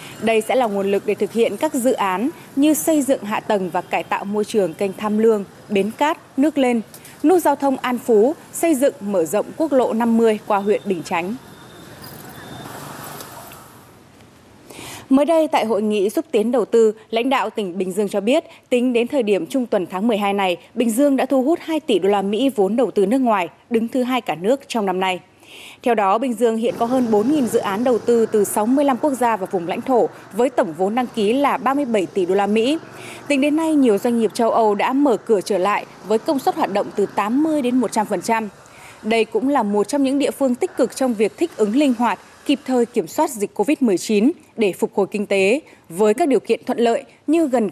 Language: Vietnamese